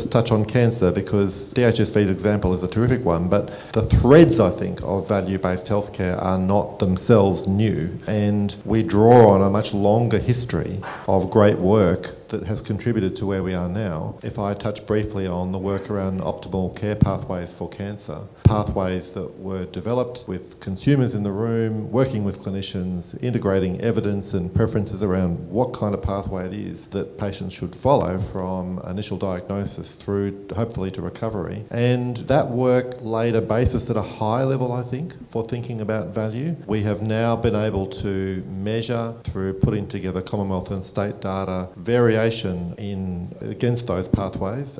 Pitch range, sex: 95-115 Hz, male